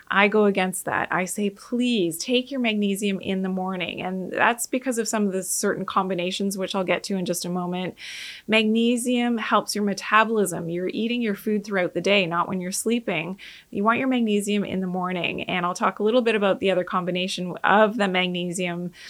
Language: English